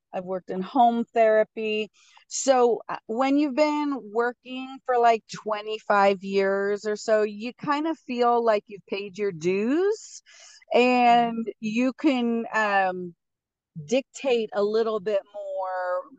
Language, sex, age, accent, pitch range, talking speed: English, female, 30-49, American, 185-225 Hz, 125 wpm